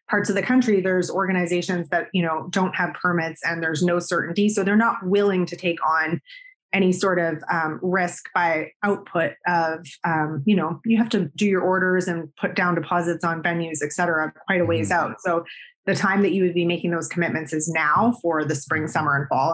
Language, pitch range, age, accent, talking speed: English, 165-200 Hz, 20-39, American, 215 wpm